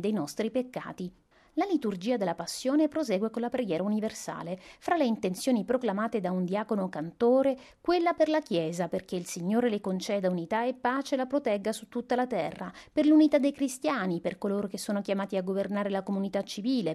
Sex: female